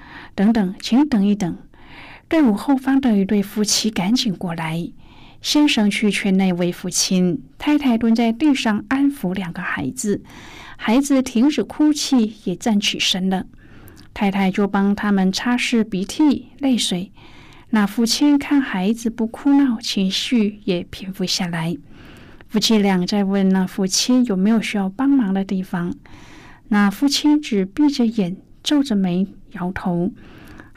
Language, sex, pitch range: Chinese, female, 190-245 Hz